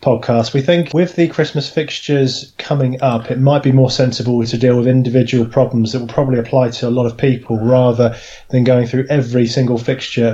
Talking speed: 205 wpm